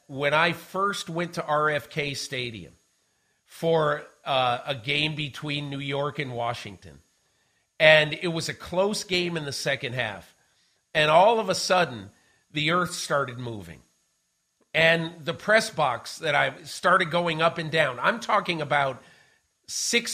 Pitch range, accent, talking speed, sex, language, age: 135-175 Hz, American, 150 wpm, male, English, 50-69